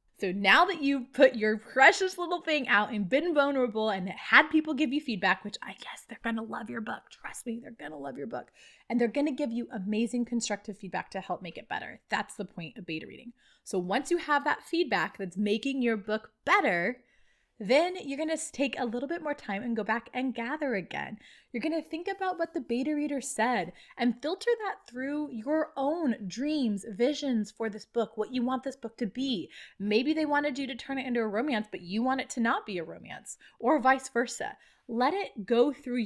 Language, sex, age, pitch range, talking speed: English, female, 20-39, 205-290 Hz, 225 wpm